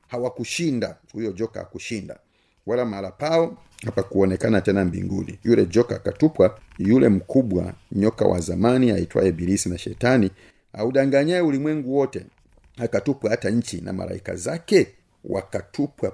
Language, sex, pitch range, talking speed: Swahili, male, 95-120 Hz, 125 wpm